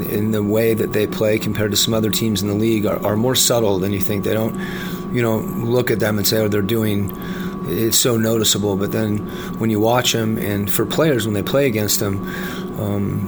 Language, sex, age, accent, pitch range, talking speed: English, male, 30-49, American, 105-120 Hz, 230 wpm